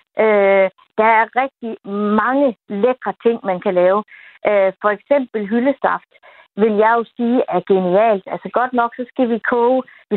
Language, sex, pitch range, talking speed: Danish, female, 195-245 Hz, 155 wpm